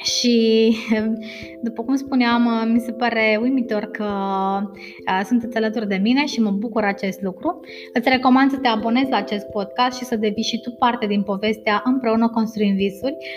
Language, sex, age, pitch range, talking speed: Romanian, female, 20-39, 205-235 Hz, 165 wpm